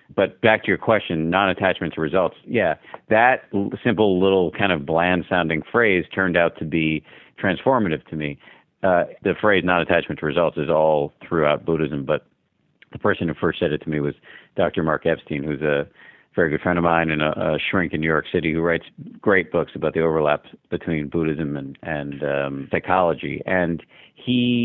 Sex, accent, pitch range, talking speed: male, American, 85-100 Hz, 185 wpm